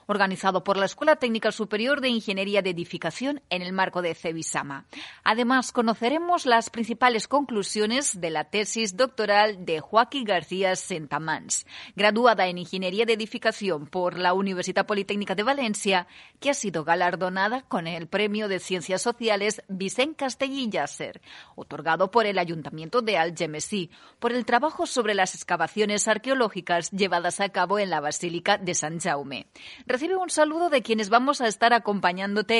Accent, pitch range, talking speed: Spanish, 175-235 Hz, 150 wpm